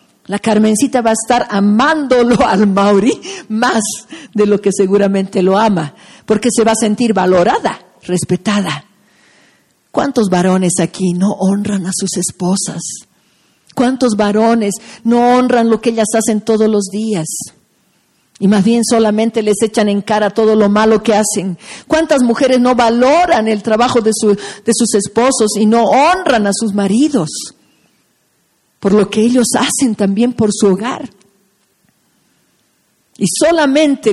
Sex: female